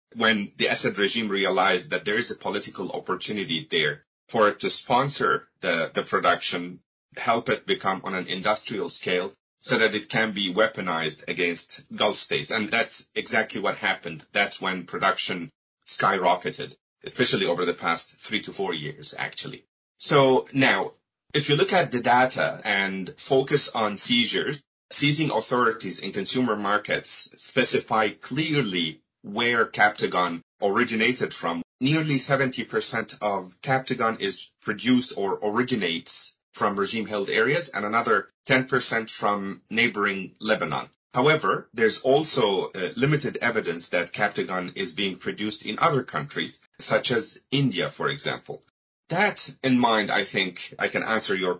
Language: English